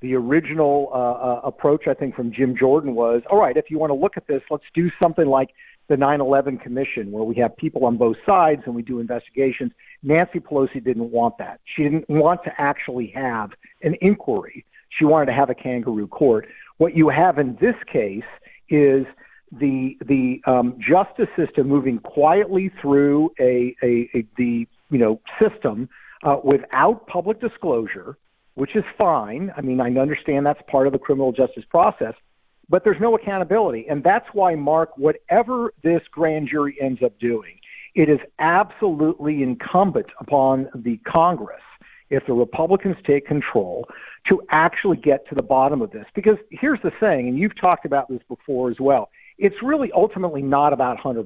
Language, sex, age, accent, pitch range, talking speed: English, male, 50-69, American, 130-170 Hz, 175 wpm